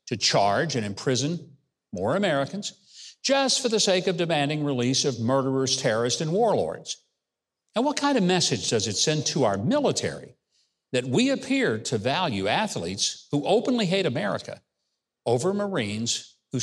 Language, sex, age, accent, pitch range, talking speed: English, male, 60-79, American, 130-200 Hz, 150 wpm